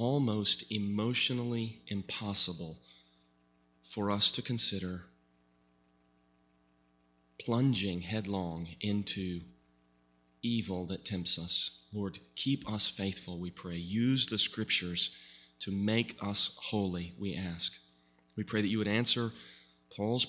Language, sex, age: English, male, 30-49